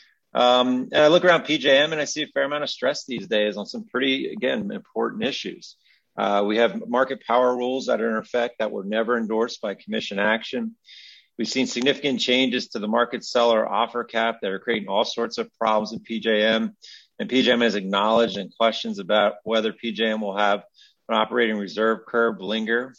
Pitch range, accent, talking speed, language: 110-145 Hz, American, 195 wpm, English